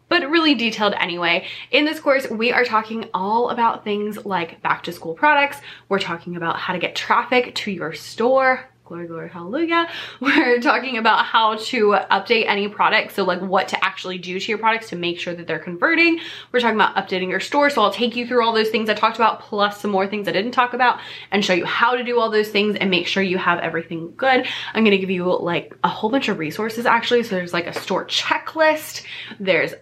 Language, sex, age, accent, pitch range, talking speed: English, female, 20-39, American, 185-245 Hz, 230 wpm